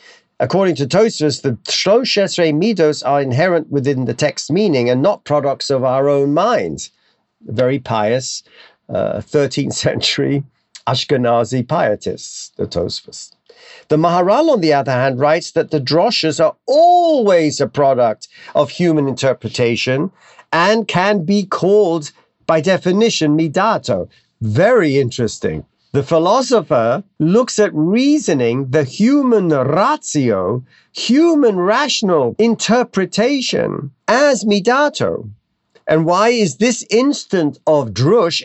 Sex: male